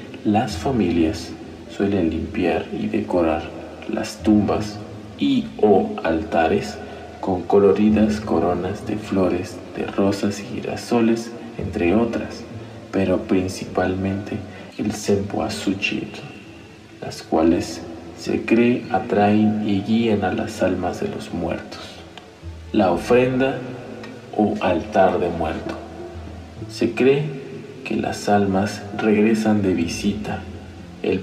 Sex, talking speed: male, 105 wpm